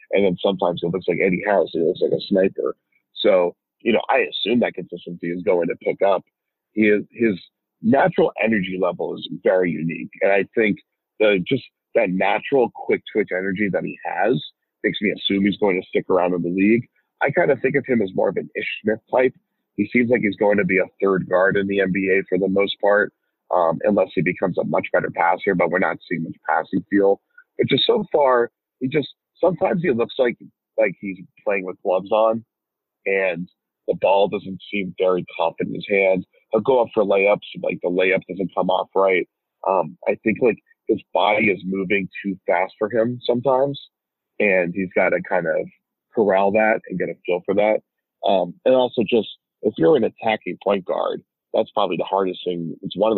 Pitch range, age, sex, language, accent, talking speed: 95-130 Hz, 40-59, male, English, American, 210 wpm